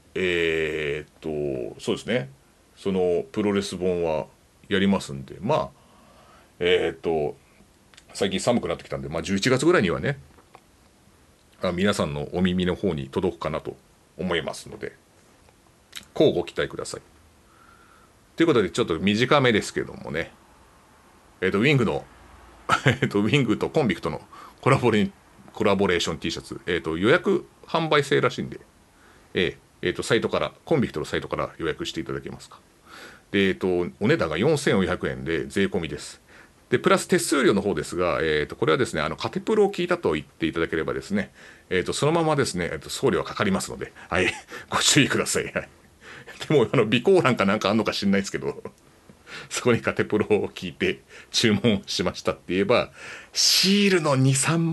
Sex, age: male, 40-59